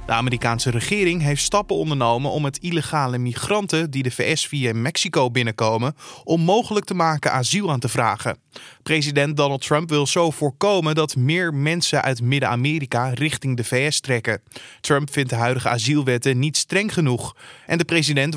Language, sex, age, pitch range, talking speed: Dutch, male, 20-39, 130-160 Hz, 160 wpm